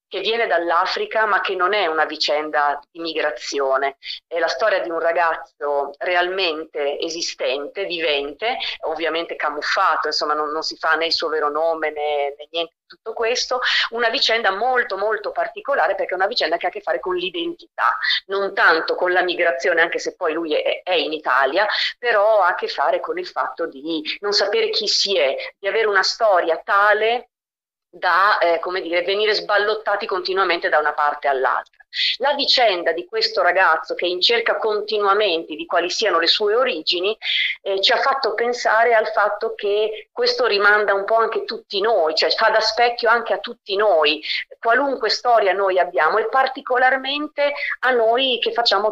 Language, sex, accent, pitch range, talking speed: Italian, female, native, 165-235 Hz, 175 wpm